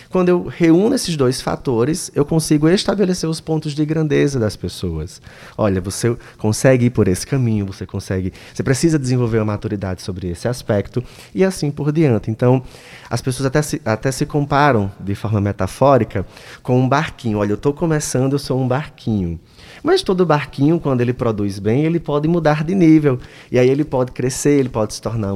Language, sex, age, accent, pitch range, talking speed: Portuguese, male, 20-39, Brazilian, 110-145 Hz, 185 wpm